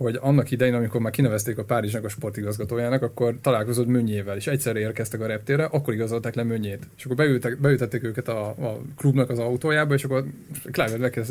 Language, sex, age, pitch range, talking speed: Hungarian, male, 20-39, 115-140 Hz, 185 wpm